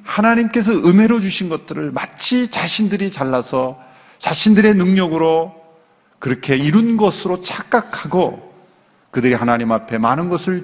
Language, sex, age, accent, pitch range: Korean, male, 40-59, native, 120-165 Hz